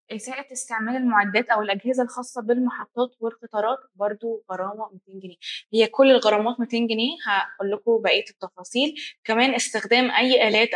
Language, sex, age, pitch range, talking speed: Arabic, female, 20-39, 210-250 Hz, 135 wpm